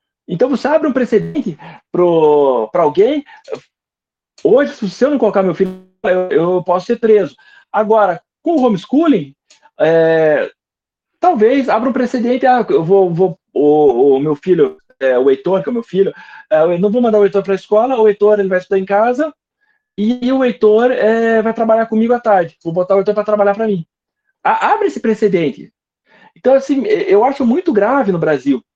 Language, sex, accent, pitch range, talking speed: Portuguese, male, Brazilian, 190-280 Hz, 190 wpm